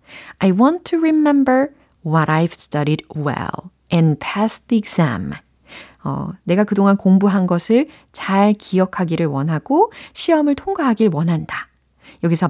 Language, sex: Korean, female